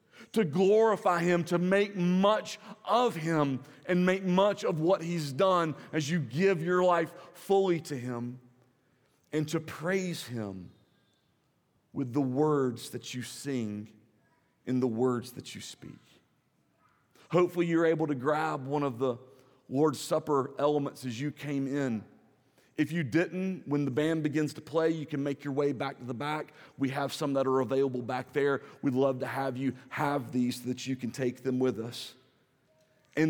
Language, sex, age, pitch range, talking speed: English, male, 40-59, 130-165 Hz, 175 wpm